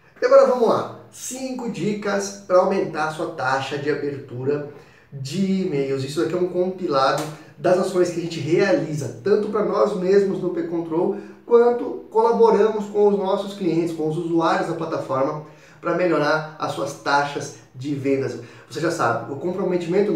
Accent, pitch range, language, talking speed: Brazilian, 150-190 Hz, Portuguese, 165 wpm